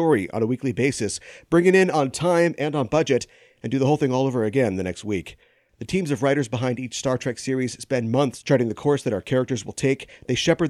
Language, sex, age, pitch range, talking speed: English, male, 40-59, 120-165 Hz, 245 wpm